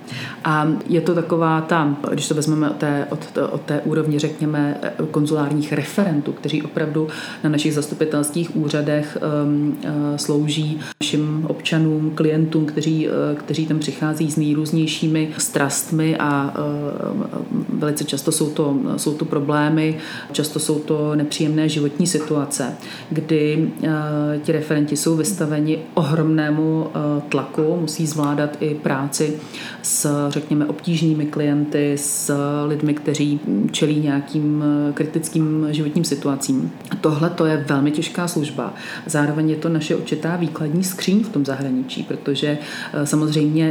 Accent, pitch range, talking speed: native, 150-160 Hz, 125 wpm